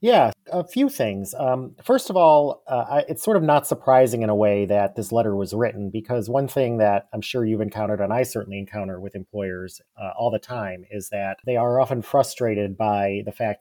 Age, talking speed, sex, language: 30-49, 215 wpm, male, English